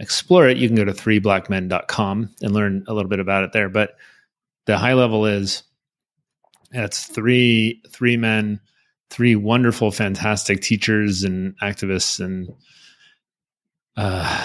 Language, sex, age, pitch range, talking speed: English, male, 30-49, 100-120 Hz, 135 wpm